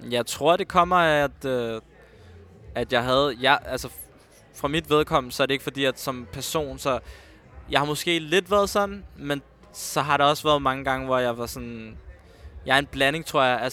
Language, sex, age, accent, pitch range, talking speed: Danish, male, 20-39, native, 120-145 Hz, 215 wpm